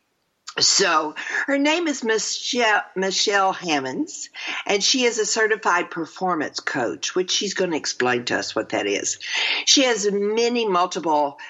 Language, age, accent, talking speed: English, 50-69, American, 145 wpm